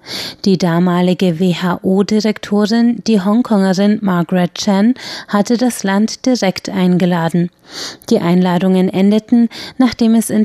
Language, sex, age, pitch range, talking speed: German, female, 30-49, 185-225 Hz, 105 wpm